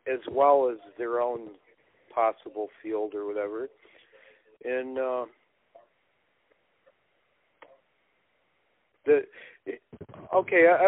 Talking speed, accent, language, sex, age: 70 wpm, American, English, male, 50-69